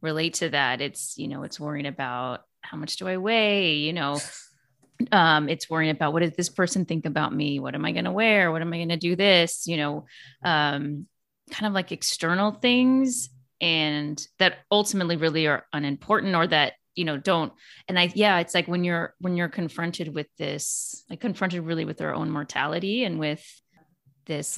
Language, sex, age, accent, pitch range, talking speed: English, female, 30-49, American, 150-185 Hz, 200 wpm